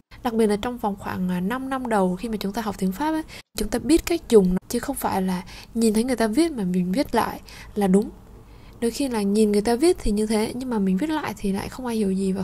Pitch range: 200-255 Hz